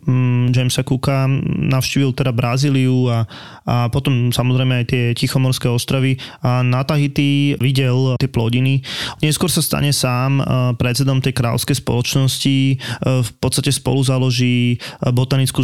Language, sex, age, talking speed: Slovak, male, 20-39, 125 wpm